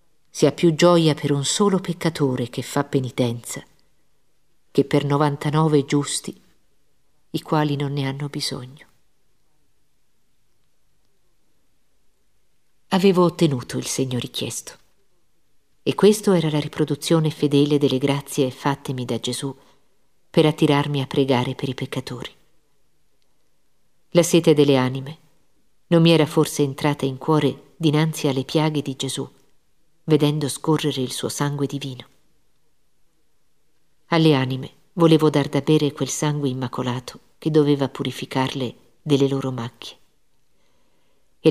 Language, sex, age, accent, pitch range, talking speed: Italian, female, 50-69, native, 135-155 Hz, 115 wpm